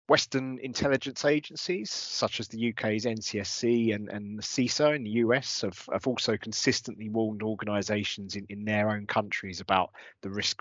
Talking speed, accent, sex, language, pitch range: 160 wpm, British, male, English, 105-125 Hz